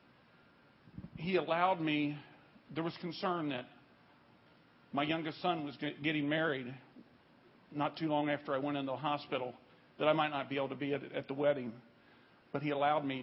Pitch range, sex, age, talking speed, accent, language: 130-155 Hz, male, 50-69, 170 wpm, American, English